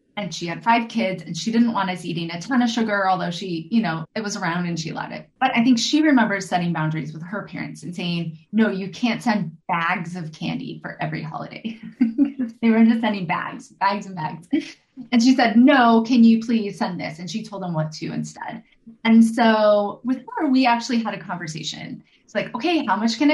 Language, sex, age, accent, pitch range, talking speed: English, female, 20-39, American, 185-250 Hz, 225 wpm